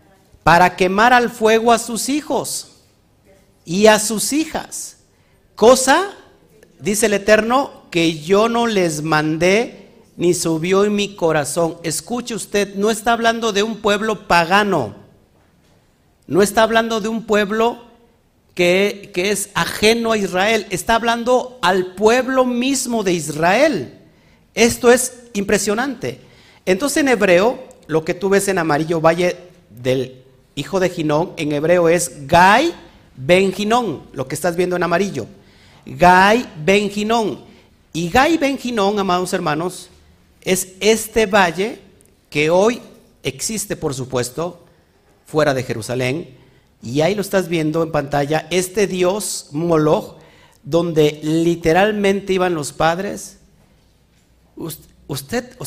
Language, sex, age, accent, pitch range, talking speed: Spanish, male, 50-69, Mexican, 160-220 Hz, 125 wpm